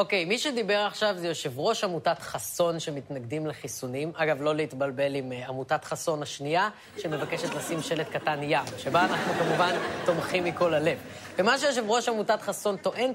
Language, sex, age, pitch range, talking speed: Hebrew, female, 30-49, 155-205 Hz, 165 wpm